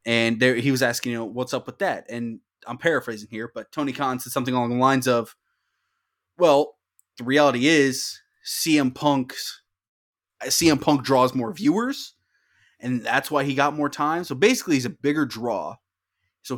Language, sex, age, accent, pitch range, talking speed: English, male, 20-39, American, 115-155 Hz, 175 wpm